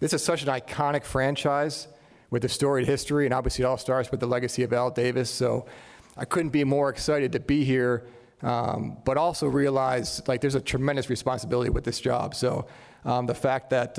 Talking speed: 200 wpm